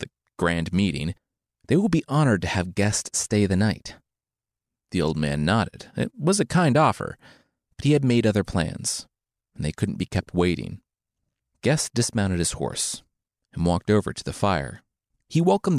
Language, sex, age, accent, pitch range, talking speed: English, male, 30-49, American, 85-125 Hz, 170 wpm